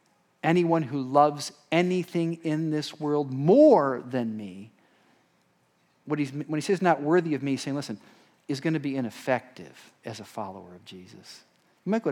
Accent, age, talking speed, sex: American, 50-69, 175 wpm, male